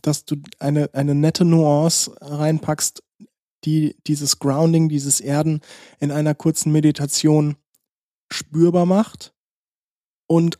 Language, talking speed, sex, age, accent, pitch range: German, 110 wpm, male, 20-39, German, 140-155 Hz